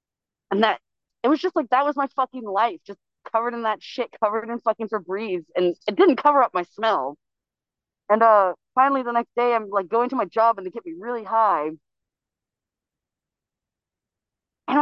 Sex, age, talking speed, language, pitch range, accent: female, 30-49, 185 wpm, English, 190-240 Hz, American